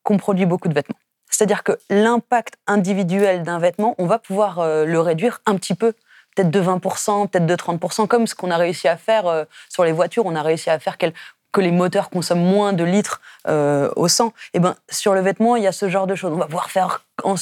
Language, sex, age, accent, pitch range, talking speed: French, female, 20-39, French, 165-205 Hz, 230 wpm